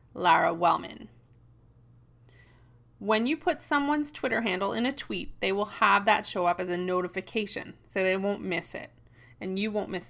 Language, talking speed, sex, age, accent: English, 170 wpm, female, 30-49, American